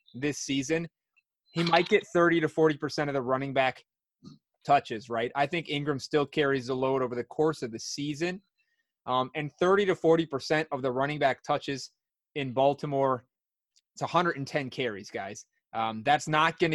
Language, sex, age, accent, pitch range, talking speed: English, male, 20-39, American, 130-155 Hz, 175 wpm